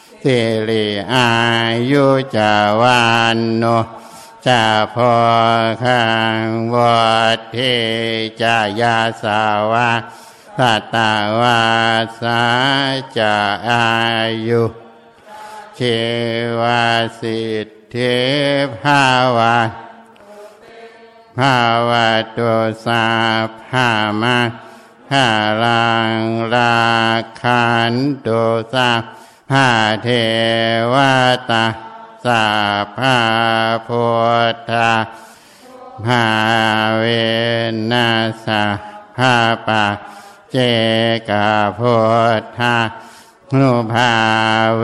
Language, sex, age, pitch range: Thai, male, 60-79, 110-120 Hz